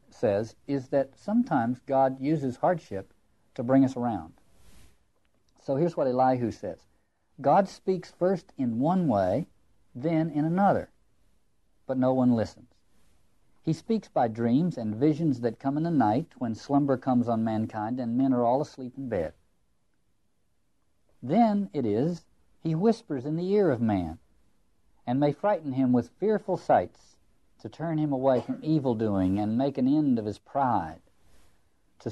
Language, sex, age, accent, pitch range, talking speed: English, male, 60-79, American, 110-165 Hz, 155 wpm